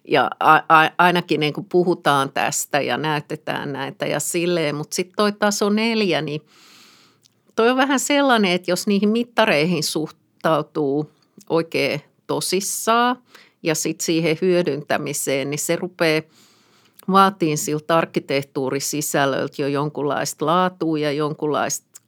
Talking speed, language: 115 wpm, Finnish